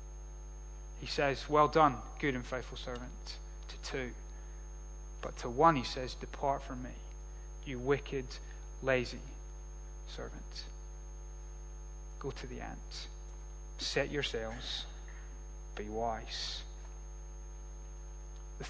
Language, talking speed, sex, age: English, 100 wpm, male, 30-49